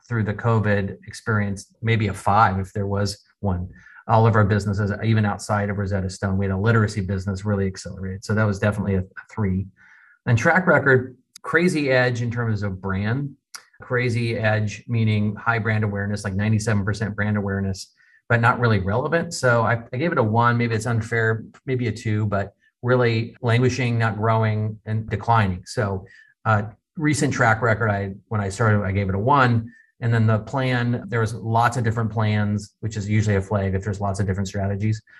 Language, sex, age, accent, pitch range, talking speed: English, male, 30-49, American, 100-115 Hz, 190 wpm